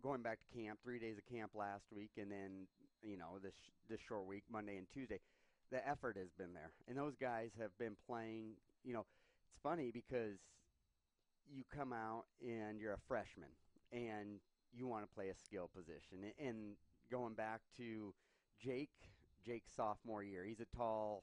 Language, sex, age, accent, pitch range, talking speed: English, male, 30-49, American, 100-120 Hz, 185 wpm